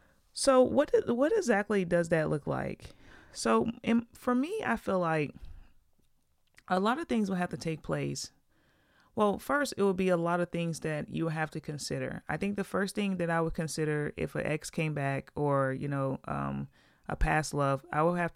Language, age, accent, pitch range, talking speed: English, 30-49, American, 140-170 Hz, 200 wpm